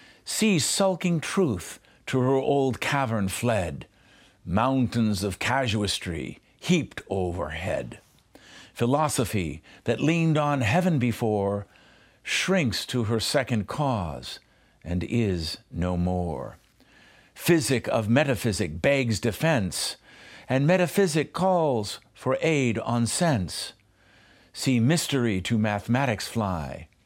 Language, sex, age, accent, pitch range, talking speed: English, male, 50-69, American, 100-135 Hz, 100 wpm